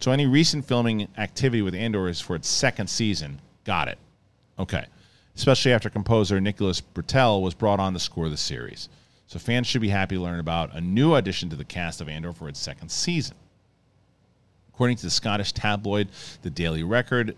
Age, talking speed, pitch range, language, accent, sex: 40-59, 190 wpm, 90-115 Hz, English, American, male